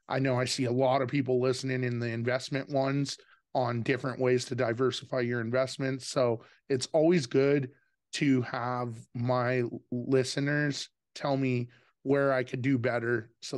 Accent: American